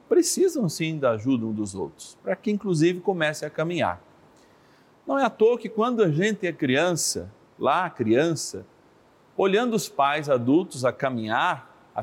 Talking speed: 165 wpm